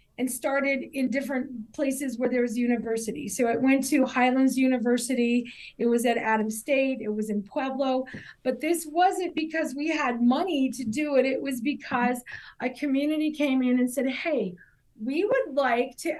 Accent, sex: American, female